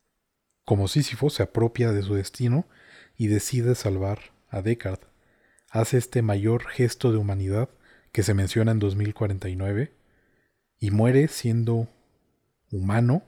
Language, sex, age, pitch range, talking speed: Spanish, male, 30-49, 100-125 Hz, 120 wpm